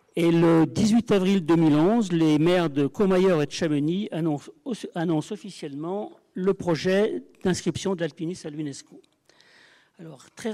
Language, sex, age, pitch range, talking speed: French, male, 50-69, 155-190 Hz, 125 wpm